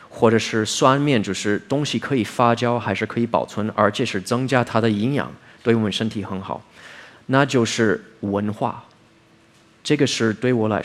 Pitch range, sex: 105-120 Hz, male